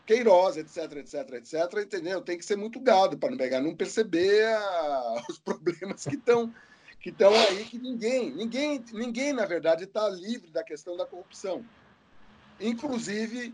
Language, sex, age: Portuguese, male, 40-59